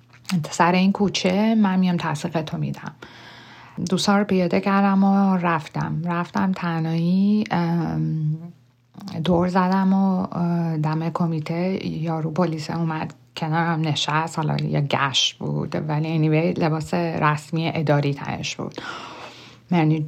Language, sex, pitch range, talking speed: Persian, female, 155-185 Hz, 115 wpm